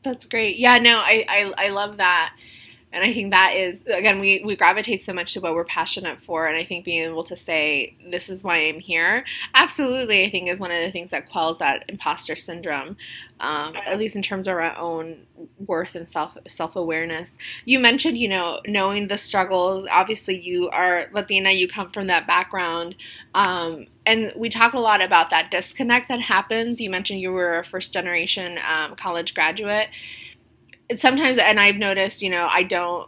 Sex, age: female, 20-39